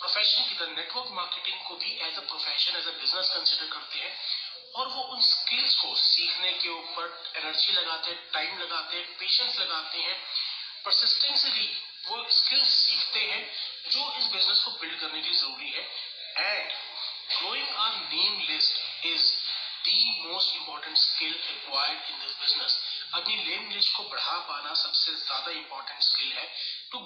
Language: Hindi